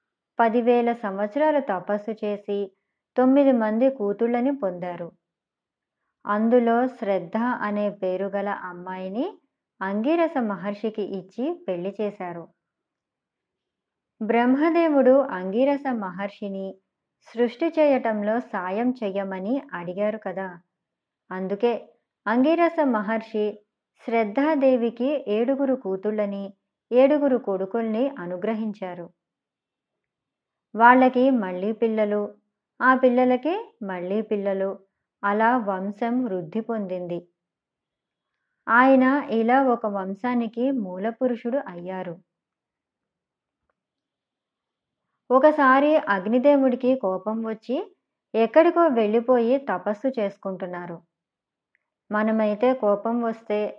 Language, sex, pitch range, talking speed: Telugu, male, 195-255 Hz, 70 wpm